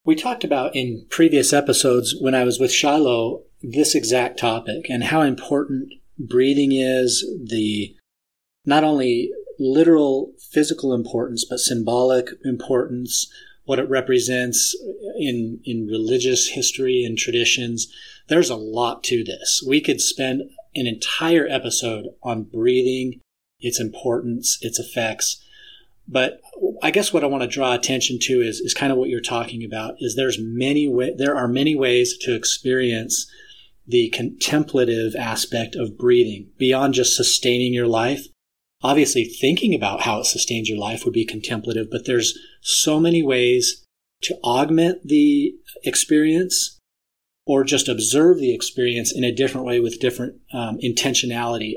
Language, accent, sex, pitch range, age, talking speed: English, American, male, 120-155 Hz, 30-49, 145 wpm